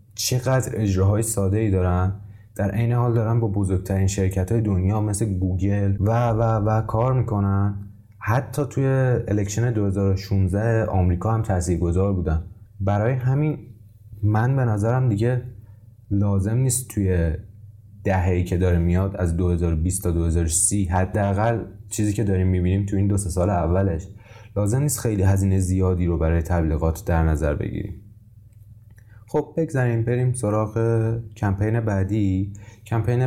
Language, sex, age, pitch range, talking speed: Persian, male, 20-39, 95-110 Hz, 135 wpm